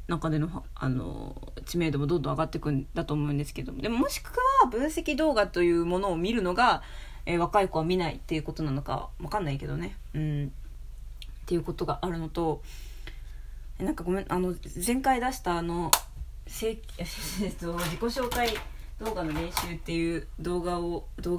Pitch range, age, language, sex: 155-185 Hz, 20-39, Japanese, female